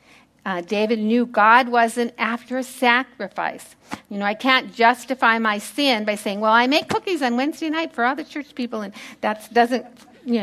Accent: American